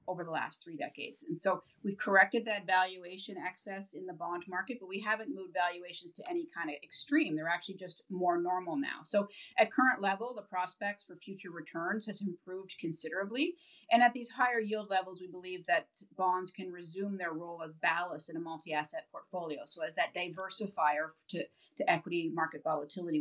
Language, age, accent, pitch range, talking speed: English, 30-49, American, 175-230 Hz, 190 wpm